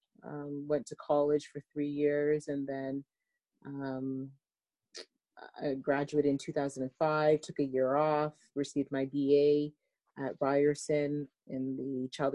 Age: 30-49